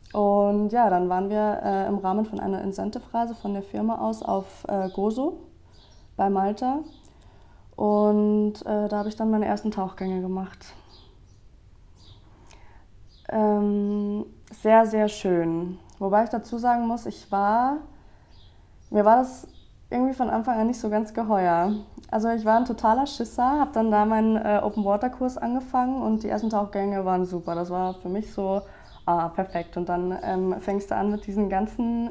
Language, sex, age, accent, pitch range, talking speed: German, female, 20-39, German, 185-220 Hz, 160 wpm